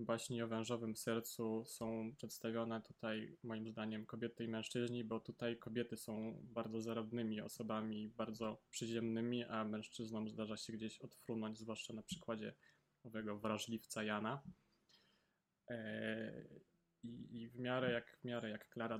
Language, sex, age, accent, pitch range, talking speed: Polish, male, 20-39, native, 110-125 Hz, 125 wpm